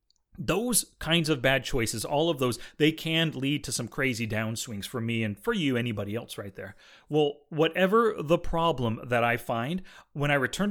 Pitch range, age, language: 120-170 Hz, 30-49, English